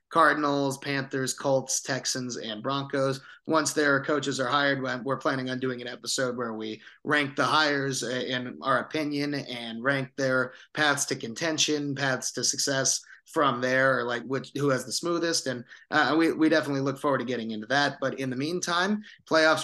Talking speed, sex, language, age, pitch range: 180 wpm, male, English, 30-49, 130-145 Hz